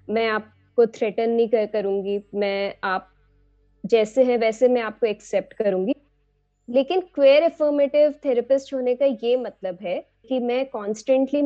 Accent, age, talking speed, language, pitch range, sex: native, 20-39, 140 wpm, Hindi, 225-285 Hz, female